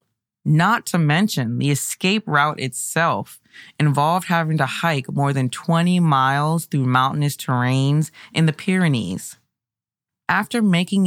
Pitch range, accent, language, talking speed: 135-170 Hz, American, English, 125 wpm